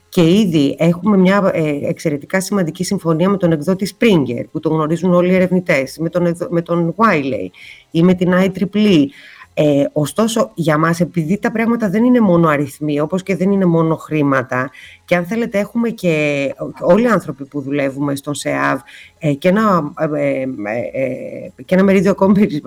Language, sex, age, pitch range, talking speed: Greek, female, 30-49, 145-190 Hz, 170 wpm